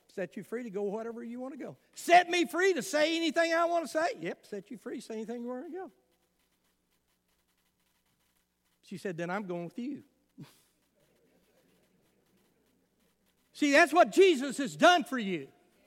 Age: 60-79